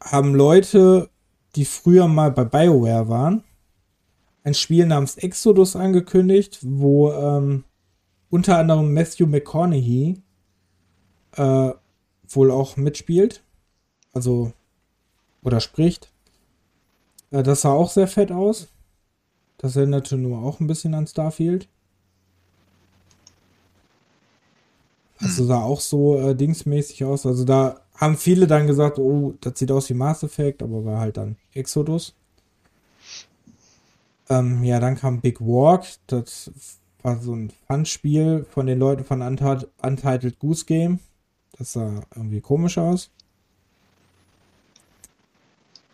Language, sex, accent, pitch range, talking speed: German, male, German, 100-155 Hz, 115 wpm